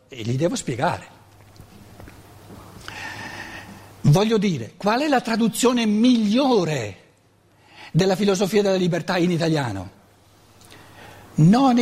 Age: 60-79